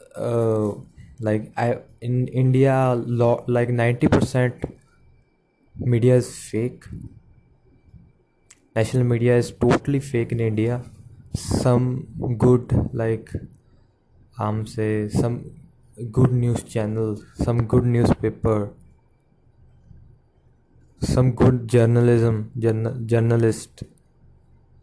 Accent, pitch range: Indian, 110-125 Hz